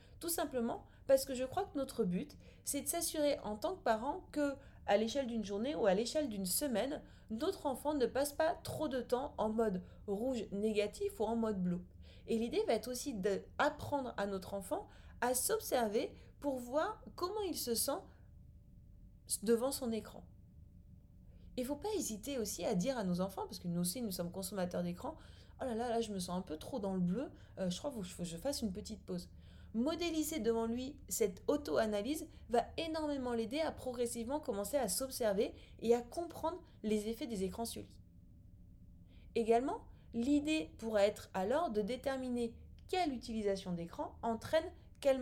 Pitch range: 195-280 Hz